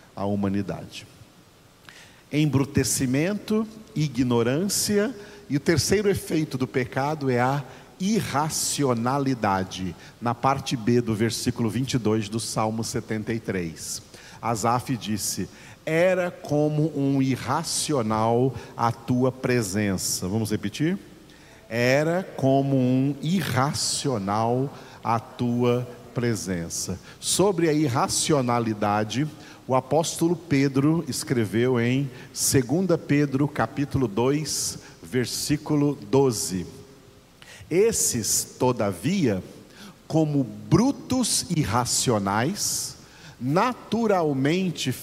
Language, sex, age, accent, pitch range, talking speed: Portuguese, male, 50-69, Brazilian, 115-155 Hz, 80 wpm